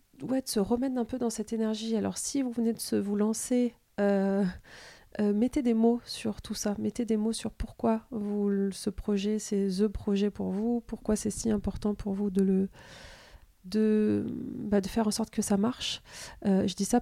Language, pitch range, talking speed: French, 195-225 Hz, 210 wpm